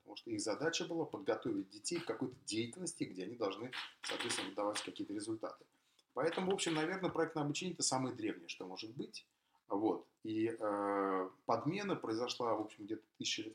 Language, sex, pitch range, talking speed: Russian, male, 115-165 Hz, 175 wpm